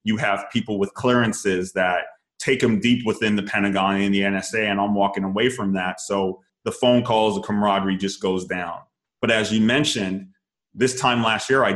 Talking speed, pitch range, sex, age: 200 wpm, 100-115 Hz, male, 30-49